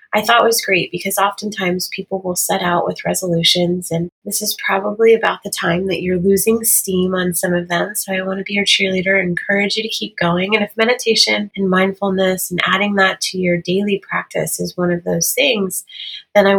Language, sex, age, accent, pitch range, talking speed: English, female, 20-39, American, 175-195 Hz, 215 wpm